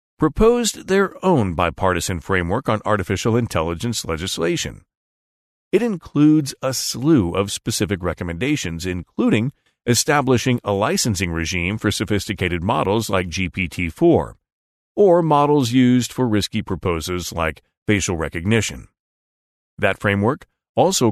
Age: 40-59